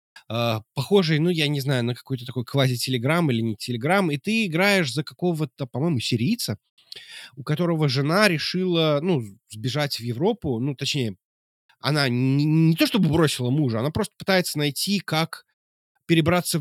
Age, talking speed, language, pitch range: 20-39, 150 wpm, Russian, 130-180 Hz